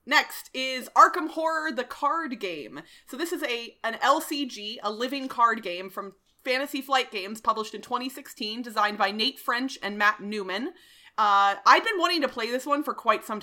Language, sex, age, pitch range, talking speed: English, female, 30-49, 210-280 Hz, 190 wpm